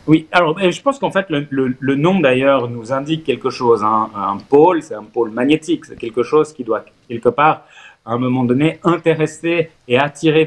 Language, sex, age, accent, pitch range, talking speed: French, male, 30-49, French, 120-160 Hz, 205 wpm